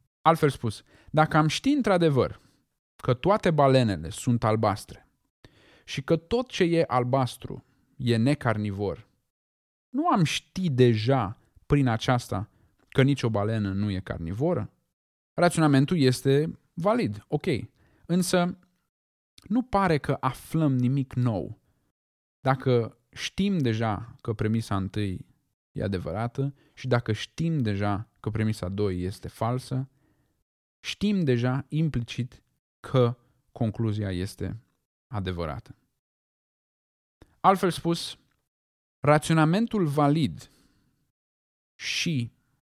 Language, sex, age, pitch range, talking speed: Romanian, male, 20-39, 105-150 Hz, 100 wpm